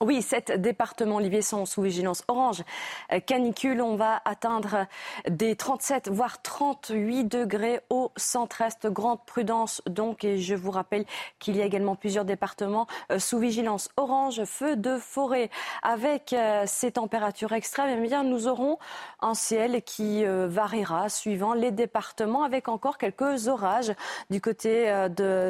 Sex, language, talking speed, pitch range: female, French, 140 wpm, 210-270 Hz